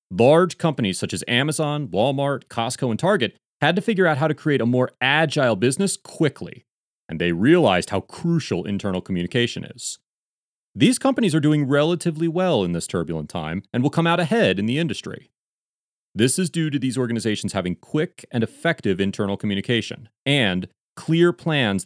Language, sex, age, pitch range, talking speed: English, male, 30-49, 100-155 Hz, 170 wpm